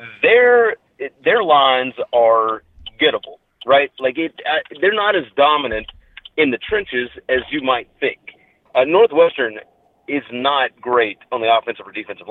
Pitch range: 125-195 Hz